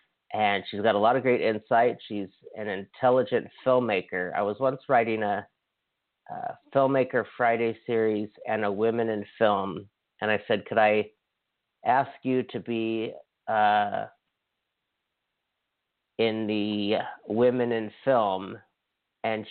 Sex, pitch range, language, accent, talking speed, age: male, 105-120 Hz, English, American, 130 wpm, 40-59